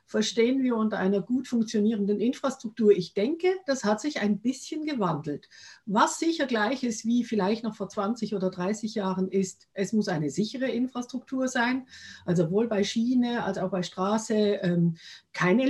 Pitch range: 195-255 Hz